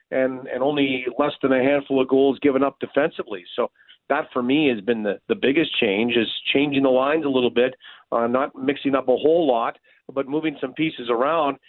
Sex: male